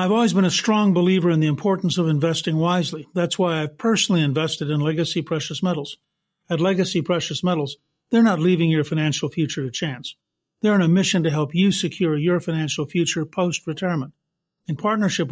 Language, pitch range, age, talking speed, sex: English, 155-185 Hz, 50-69, 190 wpm, male